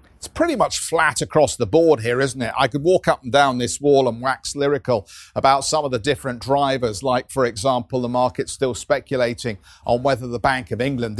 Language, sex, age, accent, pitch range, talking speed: English, male, 50-69, British, 120-155 Hz, 215 wpm